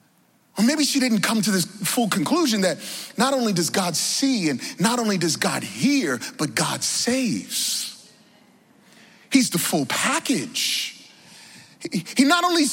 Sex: male